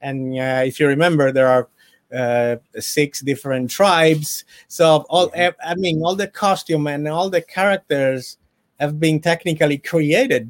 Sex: male